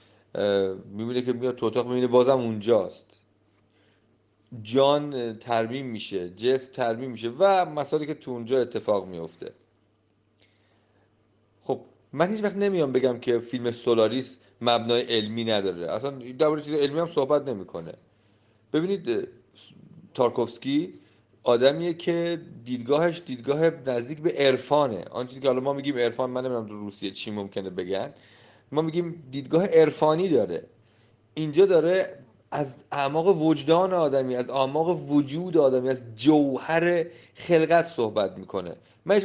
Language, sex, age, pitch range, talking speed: Persian, male, 40-59, 115-160 Hz, 125 wpm